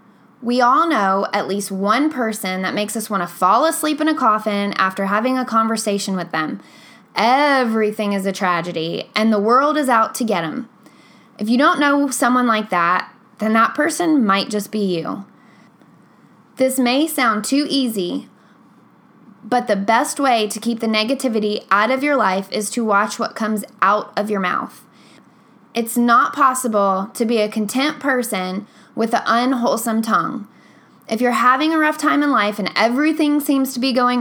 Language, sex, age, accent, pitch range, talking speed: English, female, 10-29, American, 210-255 Hz, 175 wpm